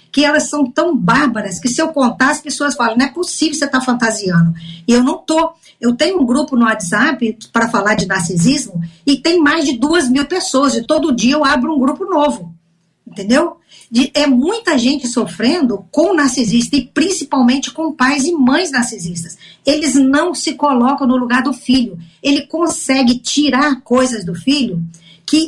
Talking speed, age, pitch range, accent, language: 185 wpm, 50-69, 220-295 Hz, Brazilian, Portuguese